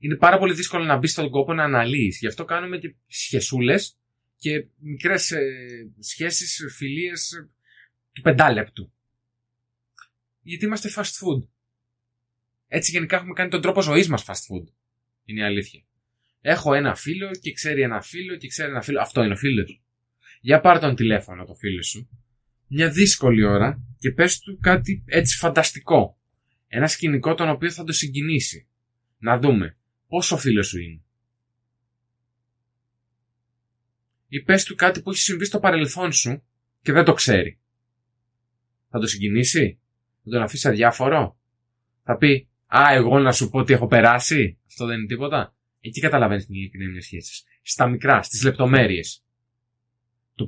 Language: Greek